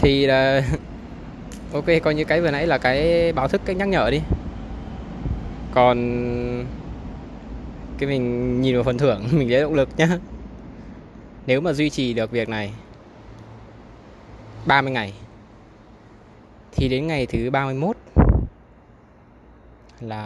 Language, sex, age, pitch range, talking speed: Vietnamese, male, 20-39, 110-140 Hz, 125 wpm